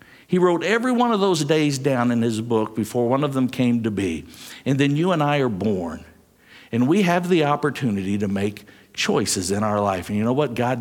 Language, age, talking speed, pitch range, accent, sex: English, 60-79, 230 wpm, 100-130 Hz, American, male